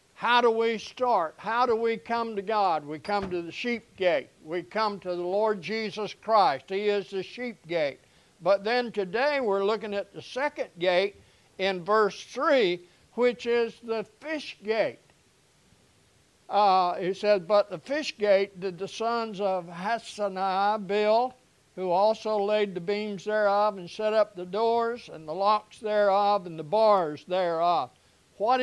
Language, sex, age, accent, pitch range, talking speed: English, male, 60-79, American, 195-235 Hz, 165 wpm